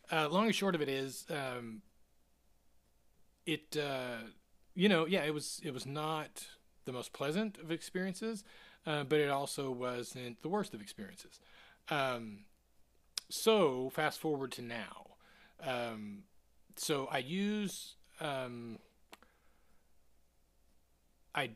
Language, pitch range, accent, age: English, 120-155 Hz, American, 30-49